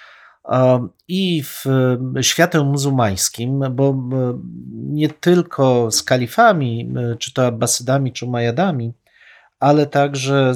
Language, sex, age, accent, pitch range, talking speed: Polish, male, 40-59, native, 120-145 Hz, 115 wpm